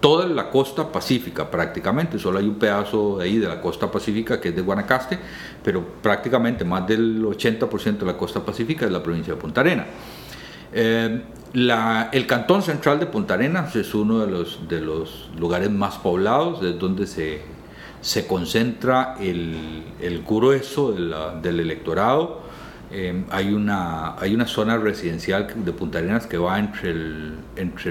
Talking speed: 165 wpm